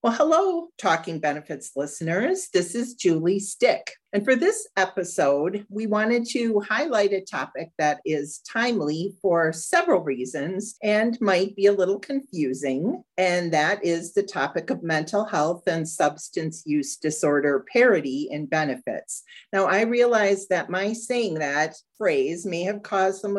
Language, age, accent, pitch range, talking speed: English, 40-59, American, 160-210 Hz, 150 wpm